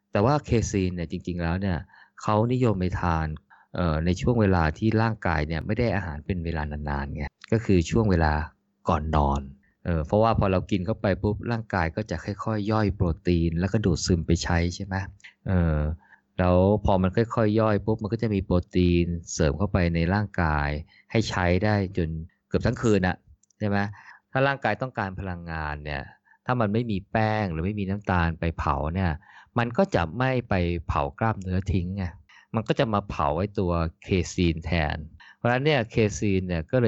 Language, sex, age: Thai, male, 20-39